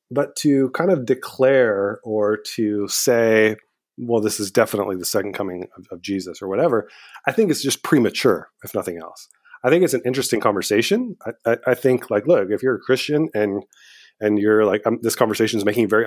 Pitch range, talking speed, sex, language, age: 105-130 Hz, 200 wpm, male, English, 30-49